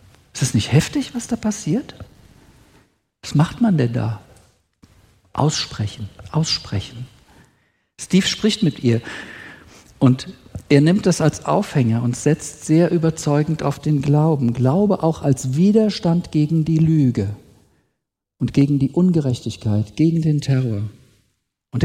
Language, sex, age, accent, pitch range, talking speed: German, male, 50-69, German, 125-160 Hz, 125 wpm